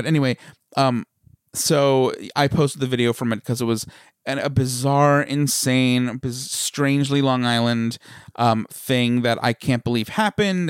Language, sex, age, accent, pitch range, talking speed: English, male, 30-49, American, 115-140 Hz, 150 wpm